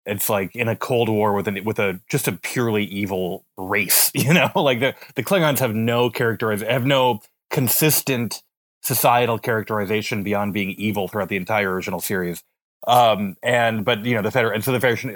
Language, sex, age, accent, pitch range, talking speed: English, male, 30-49, American, 100-125 Hz, 190 wpm